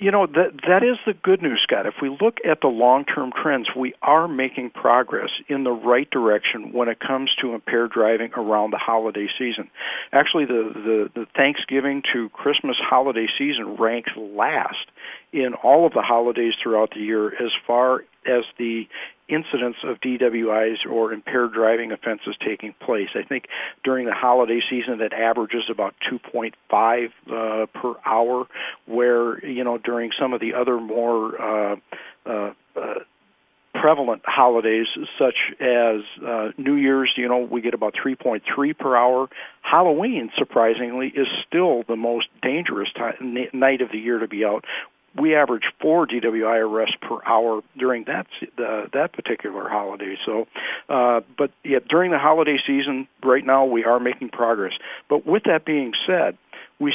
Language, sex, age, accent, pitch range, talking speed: English, male, 50-69, American, 115-130 Hz, 170 wpm